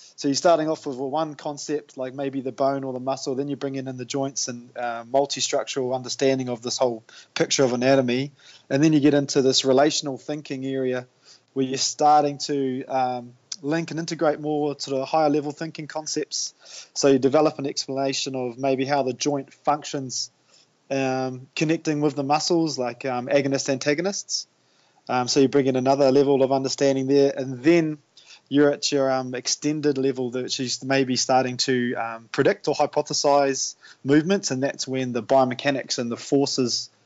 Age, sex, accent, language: 20-39, male, Australian, English